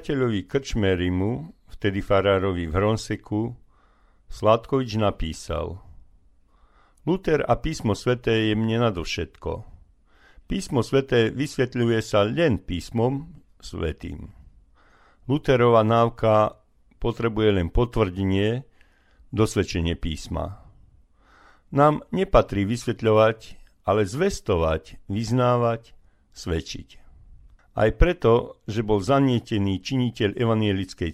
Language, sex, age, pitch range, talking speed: Slovak, male, 50-69, 95-125 Hz, 85 wpm